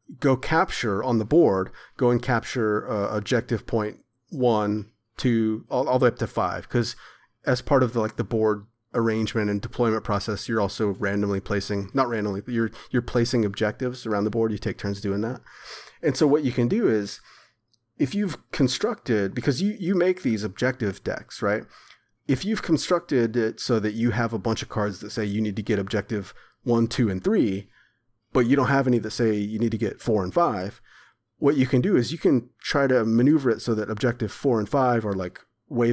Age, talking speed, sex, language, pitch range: 30-49, 210 wpm, male, English, 105-130 Hz